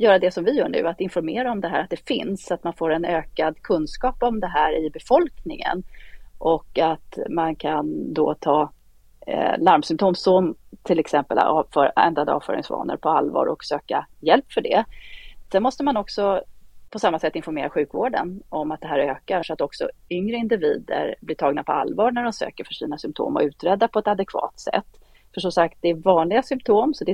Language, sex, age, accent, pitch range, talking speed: English, female, 30-49, Swedish, 160-245 Hz, 195 wpm